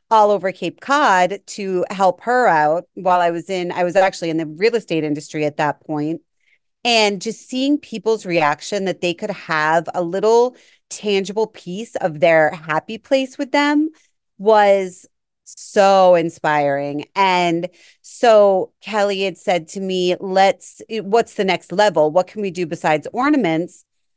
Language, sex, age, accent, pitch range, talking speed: English, female, 30-49, American, 170-215 Hz, 155 wpm